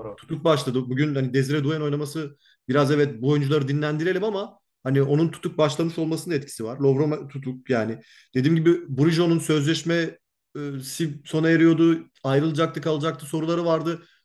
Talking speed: 140 wpm